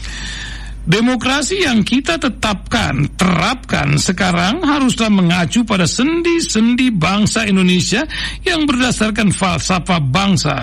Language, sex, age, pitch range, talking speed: Indonesian, male, 60-79, 160-225 Hz, 90 wpm